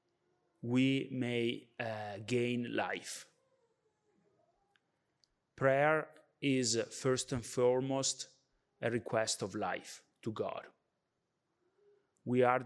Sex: male